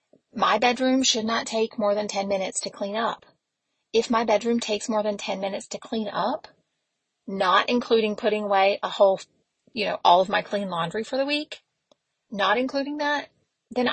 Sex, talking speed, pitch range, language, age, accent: female, 185 wpm, 195-230 Hz, English, 30-49, American